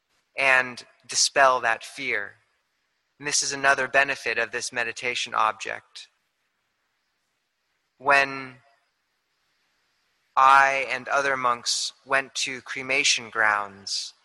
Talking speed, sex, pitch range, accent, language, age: 95 wpm, male, 120-140 Hz, American, English, 20-39